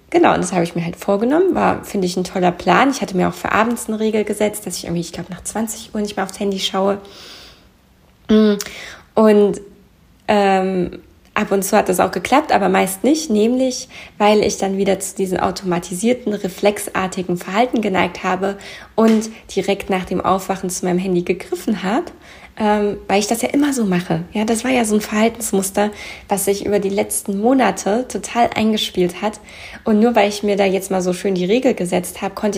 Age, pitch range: 20-39, 185-215 Hz